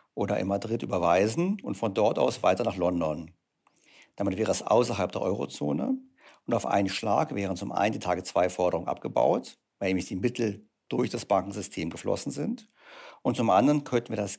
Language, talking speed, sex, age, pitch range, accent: German, 175 wpm, male, 50-69, 95-135 Hz, German